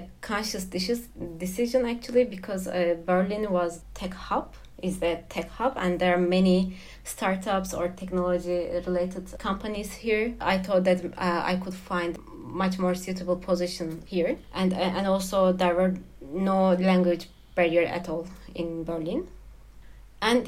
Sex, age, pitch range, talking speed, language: female, 20-39, 180-195 Hz, 145 wpm, Russian